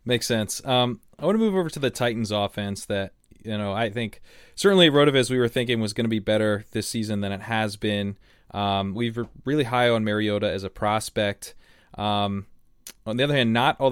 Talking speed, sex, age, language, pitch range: 210 wpm, male, 20-39, English, 100-120 Hz